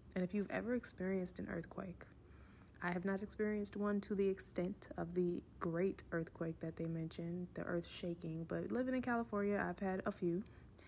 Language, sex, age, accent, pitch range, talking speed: English, female, 20-39, American, 170-200 Hz, 180 wpm